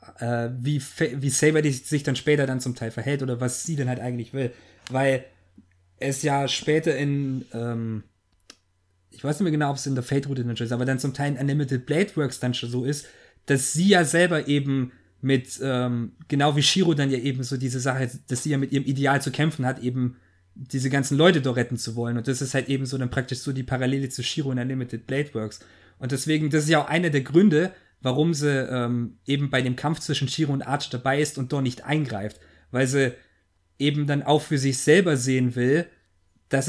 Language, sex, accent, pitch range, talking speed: German, male, German, 125-145 Hz, 225 wpm